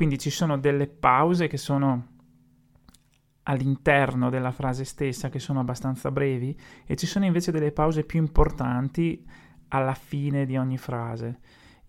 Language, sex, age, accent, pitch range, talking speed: Italian, male, 30-49, native, 130-155 Hz, 140 wpm